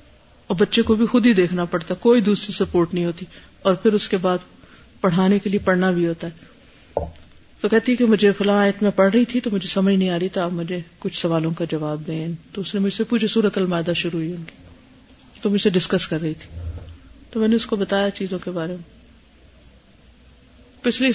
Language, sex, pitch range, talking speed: Urdu, female, 180-230 Hz, 220 wpm